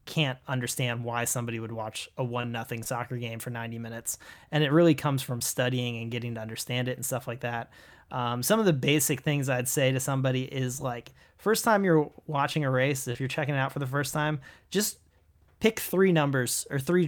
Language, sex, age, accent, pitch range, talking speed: English, male, 30-49, American, 120-140 Hz, 220 wpm